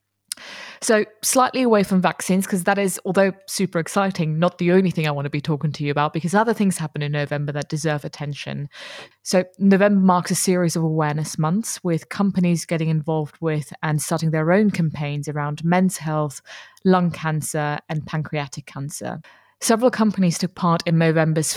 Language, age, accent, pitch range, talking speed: English, 20-39, British, 150-185 Hz, 180 wpm